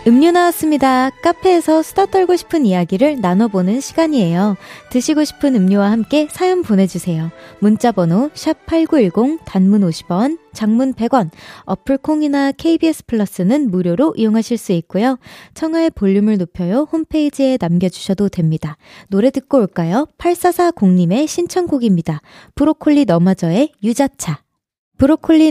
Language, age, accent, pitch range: Korean, 20-39, native, 190-305 Hz